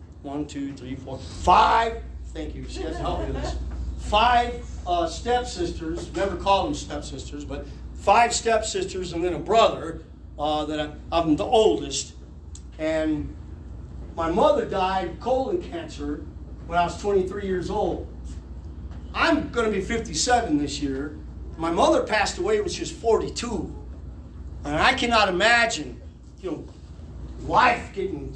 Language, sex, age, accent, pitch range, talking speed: English, male, 40-59, American, 145-225 Hz, 150 wpm